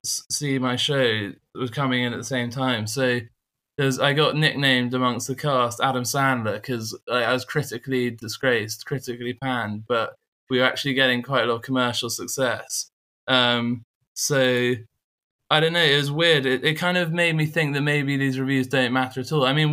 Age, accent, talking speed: 20-39, British, 190 wpm